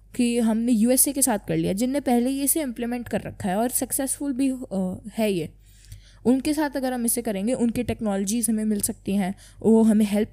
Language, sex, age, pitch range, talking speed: English, female, 20-39, 205-255 Hz, 205 wpm